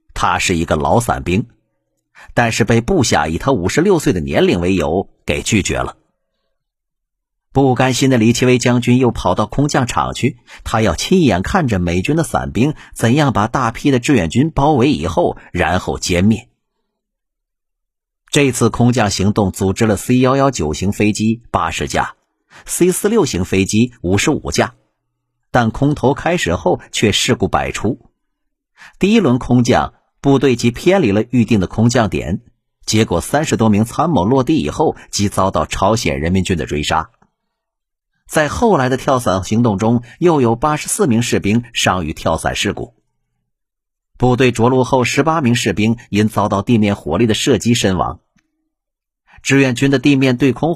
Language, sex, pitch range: Chinese, male, 100-130 Hz